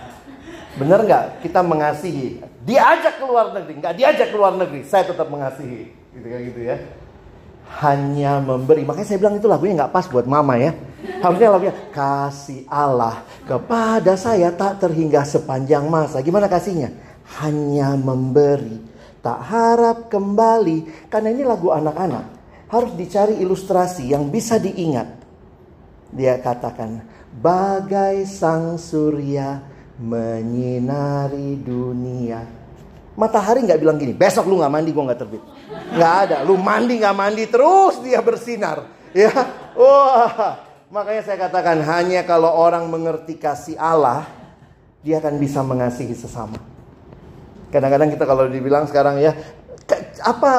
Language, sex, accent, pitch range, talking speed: Indonesian, male, native, 140-195 Hz, 130 wpm